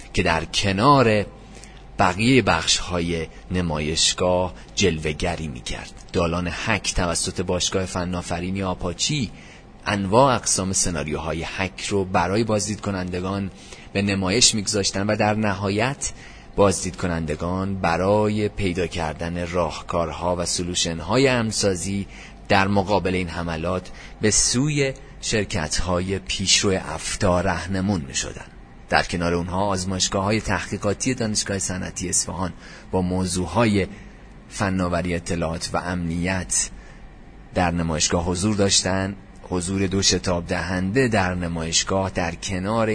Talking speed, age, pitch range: 105 wpm, 30-49, 90-100 Hz